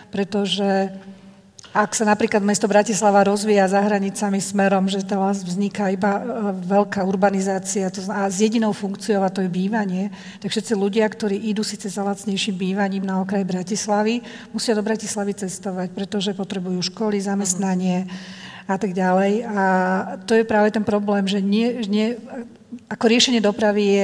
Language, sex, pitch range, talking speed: Slovak, female, 190-210 Hz, 150 wpm